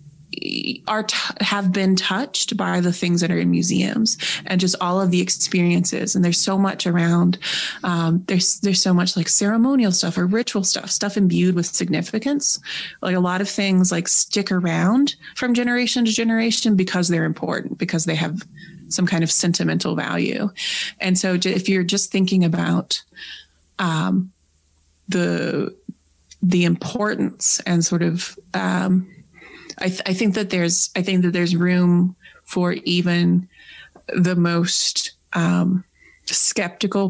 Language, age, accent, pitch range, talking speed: English, 30-49, American, 170-195 Hz, 150 wpm